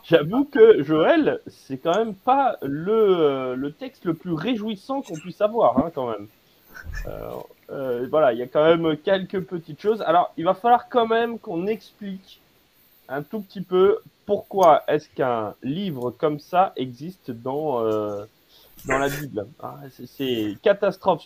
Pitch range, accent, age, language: 140-200 Hz, French, 30-49, French